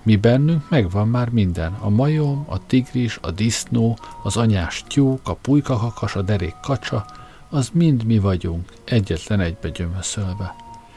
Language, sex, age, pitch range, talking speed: Hungarian, male, 50-69, 90-125 Hz, 140 wpm